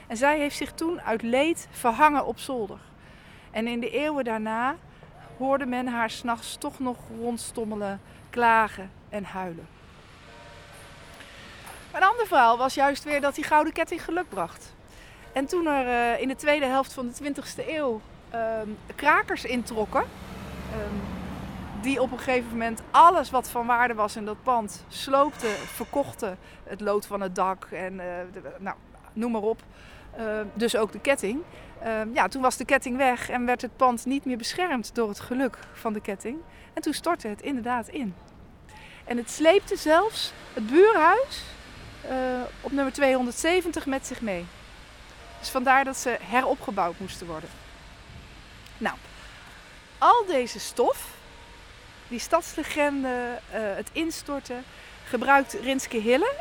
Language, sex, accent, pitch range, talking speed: Dutch, female, Dutch, 225-280 Hz, 150 wpm